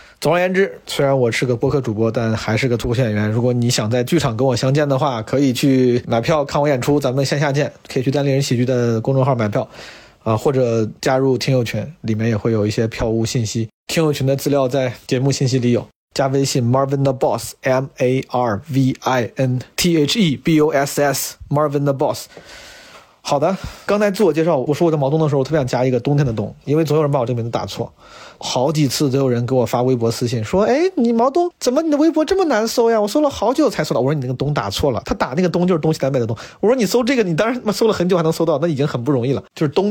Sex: male